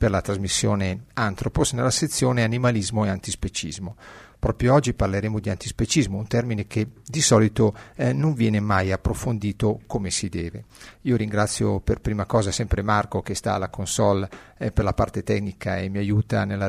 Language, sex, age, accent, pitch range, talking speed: Italian, male, 50-69, native, 100-120 Hz, 170 wpm